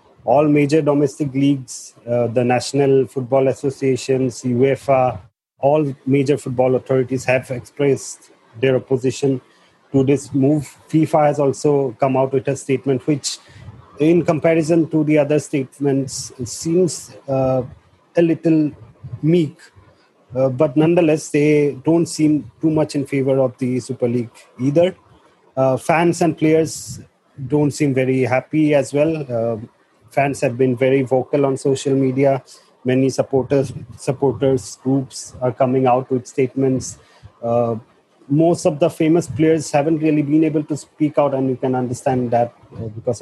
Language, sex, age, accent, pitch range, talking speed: English, male, 40-59, Indian, 125-150 Hz, 145 wpm